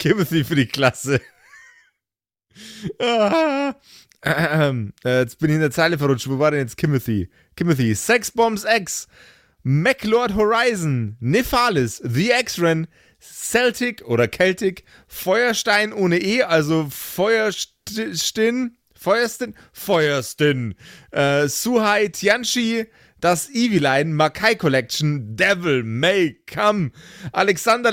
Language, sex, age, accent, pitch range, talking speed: German, male, 30-49, German, 140-230 Hz, 115 wpm